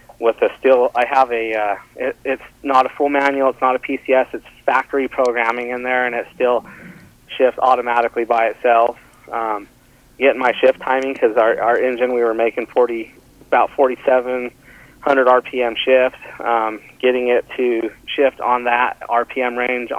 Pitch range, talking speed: 110-125 Hz, 170 wpm